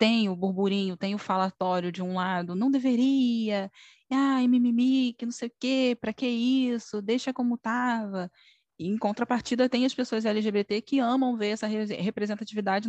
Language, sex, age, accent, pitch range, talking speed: Portuguese, female, 10-29, Brazilian, 180-240 Hz, 170 wpm